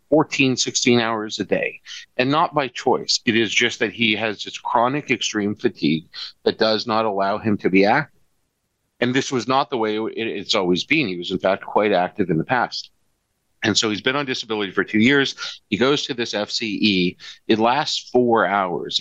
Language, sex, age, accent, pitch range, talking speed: English, male, 50-69, American, 105-125 Hz, 200 wpm